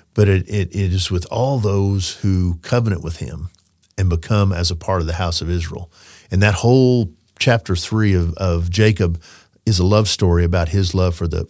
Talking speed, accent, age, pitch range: 205 wpm, American, 50-69, 90-110 Hz